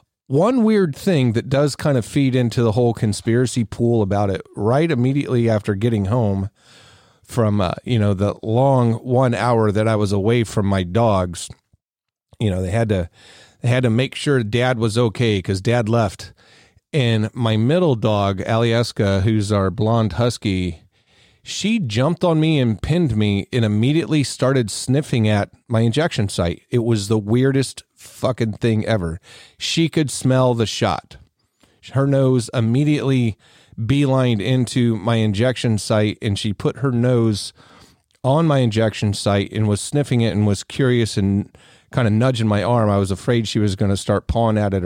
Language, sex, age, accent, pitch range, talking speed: English, male, 40-59, American, 105-130 Hz, 175 wpm